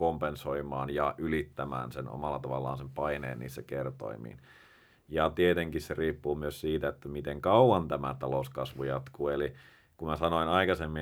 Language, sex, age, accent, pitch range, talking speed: Finnish, male, 30-49, native, 75-85 Hz, 145 wpm